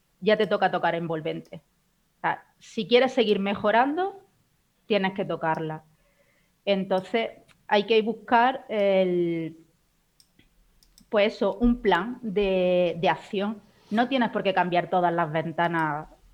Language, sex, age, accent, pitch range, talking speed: Spanish, female, 30-49, Spanish, 175-215 Hz, 125 wpm